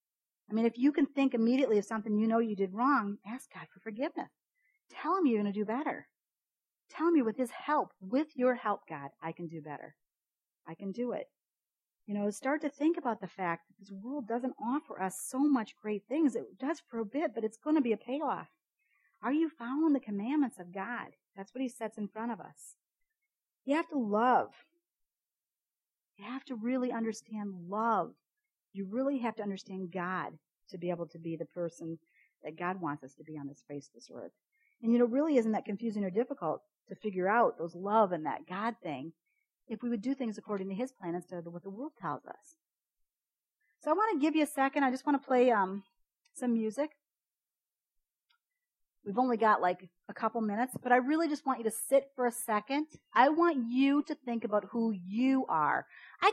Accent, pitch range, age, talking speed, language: American, 195-275 Hz, 50-69, 215 wpm, English